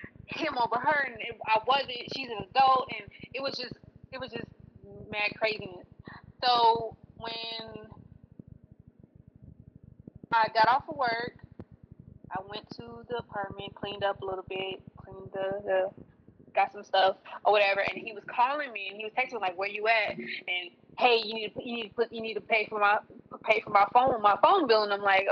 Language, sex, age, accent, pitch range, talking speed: English, female, 20-39, American, 200-230 Hz, 190 wpm